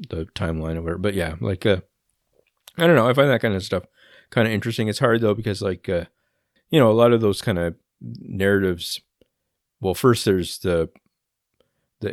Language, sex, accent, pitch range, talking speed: English, male, American, 85-105 Hz, 200 wpm